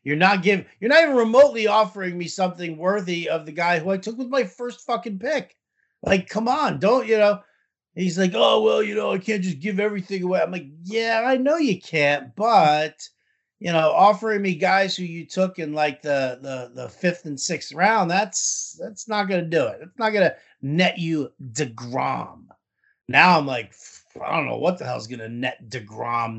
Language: English